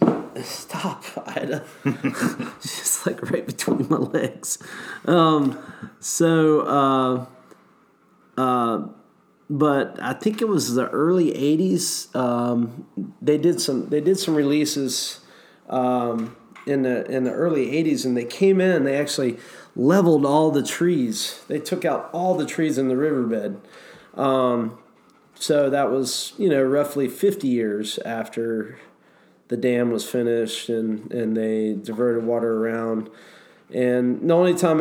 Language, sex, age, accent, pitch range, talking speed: English, male, 30-49, American, 115-145 Hz, 140 wpm